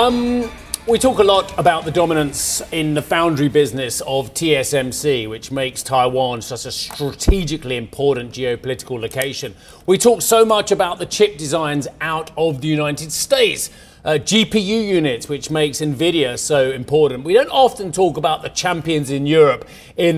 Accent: British